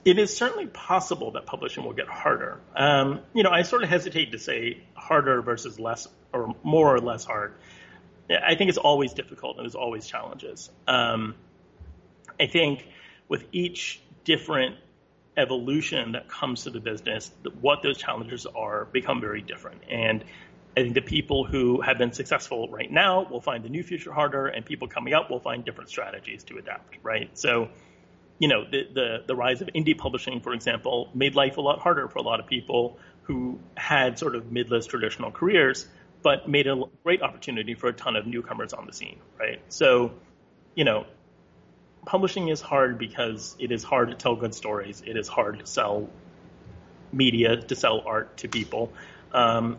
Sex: male